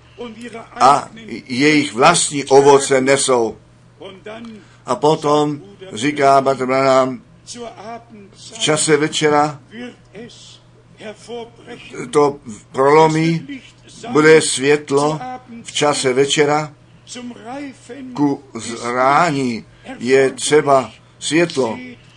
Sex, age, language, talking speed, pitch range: male, 60-79, Czech, 70 wpm, 130-160 Hz